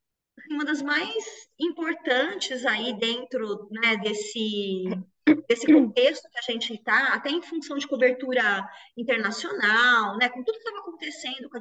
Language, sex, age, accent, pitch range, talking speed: Portuguese, female, 20-39, Brazilian, 210-295 Hz, 145 wpm